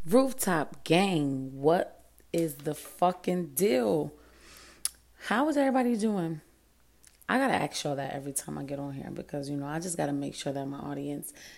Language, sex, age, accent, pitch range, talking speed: English, female, 20-39, American, 140-170 Hz, 170 wpm